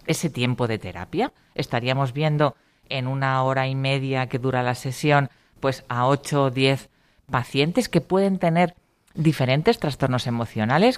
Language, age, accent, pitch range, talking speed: Spanish, 40-59, Spanish, 120-160 Hz, 150 wpm